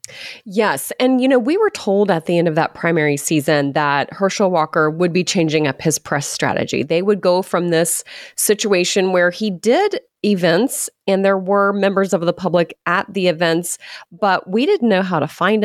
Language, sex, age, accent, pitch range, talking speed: English, female, 30-49, American, 165-210 Hz, 195 wpm